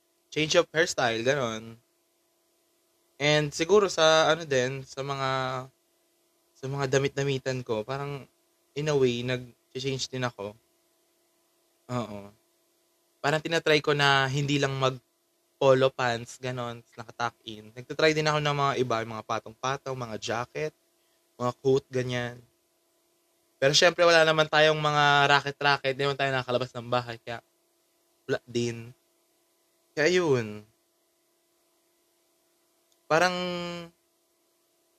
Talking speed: 110 wpm